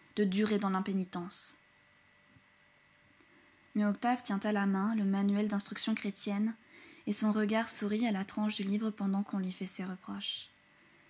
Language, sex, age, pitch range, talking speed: French, female, 20-39, 195-215 Hz, 155 wpm